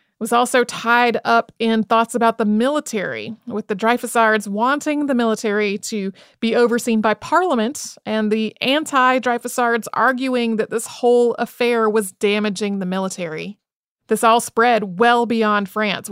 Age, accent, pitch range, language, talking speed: 30-49, American, 205-235 Hz, English, 140 wpm